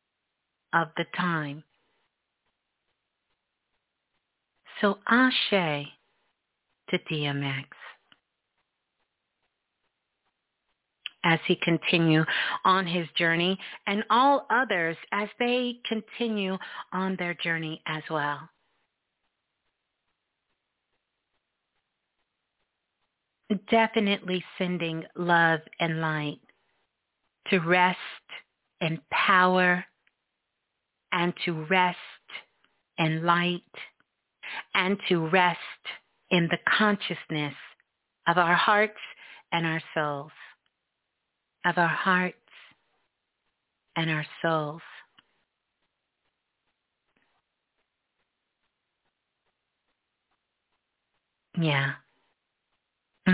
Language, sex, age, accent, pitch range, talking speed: English, female, 50-69, American, 160-190 Hz, 65 wpm